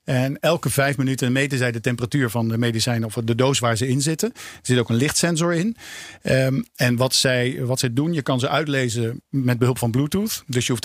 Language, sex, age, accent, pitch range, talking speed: Dutch, male, 50-69, Dutch, 120-145 Hz, 230 wpm